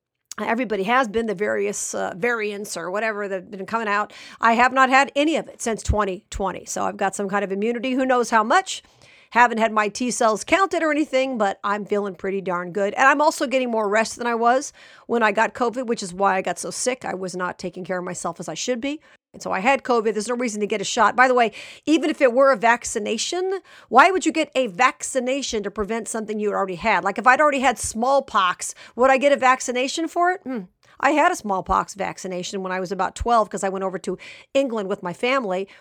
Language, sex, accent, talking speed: English, female, American, 240 wpm